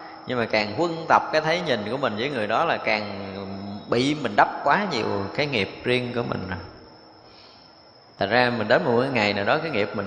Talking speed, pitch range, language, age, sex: 220 wpm, 105-135 Hz, Vietnamese, 20-39, male